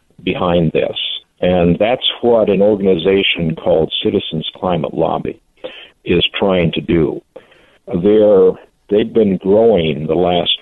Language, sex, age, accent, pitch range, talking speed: English, male, 60-79, American, 90-110 Hz, 120 wpm